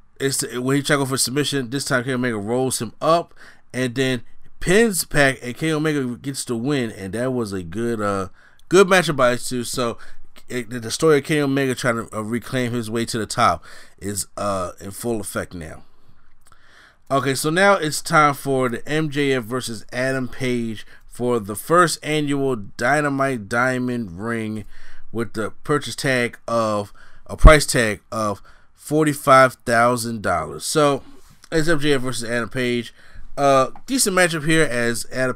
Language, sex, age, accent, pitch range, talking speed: English, male, 30-49, American, 110-135 Hz, 165 wpm